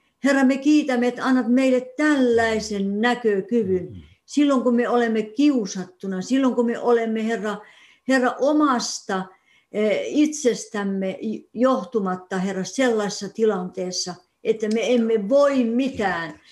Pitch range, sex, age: 195-260 Hz, female, 60-79